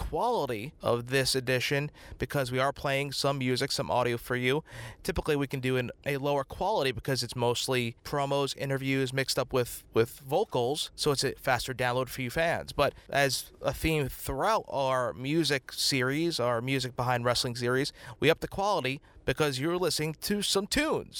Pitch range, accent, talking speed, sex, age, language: 125-150 Hz, American, 180 wpm, male, 30-49, English